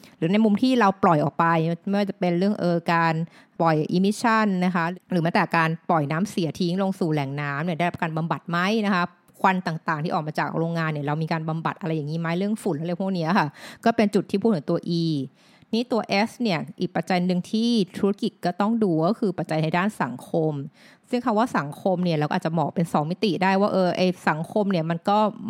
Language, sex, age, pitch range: Thai, female, 20-39, 170-205 Hz